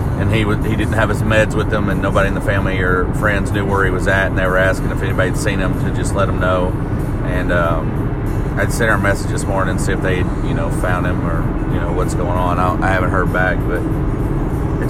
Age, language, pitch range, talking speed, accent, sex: 30-49, English, 105-140 Hz, 270 wpm, American, male